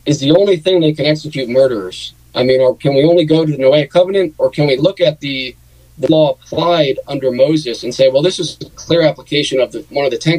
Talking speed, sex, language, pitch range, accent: 255 wpm, male, English, 125-155 Hz, American